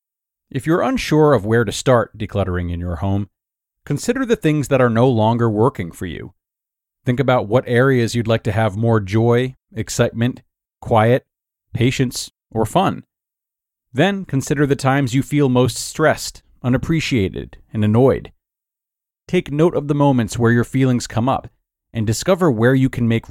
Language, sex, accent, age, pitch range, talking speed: English, male, American, 40-59, 105-135 Hz, 160 wpm